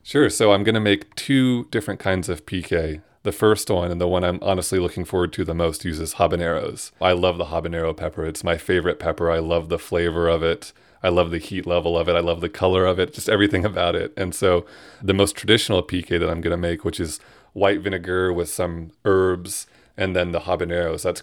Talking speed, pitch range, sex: 230 wpm, 85-100 Hz, male